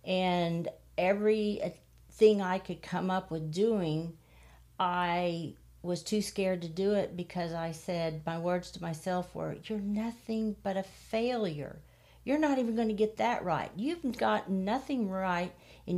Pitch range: 160-200 Hz